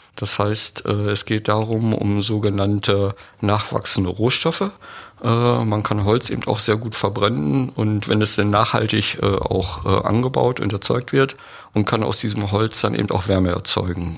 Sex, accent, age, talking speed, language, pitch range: male, German, 50-69, 155 wpm, German, 100-120 Hz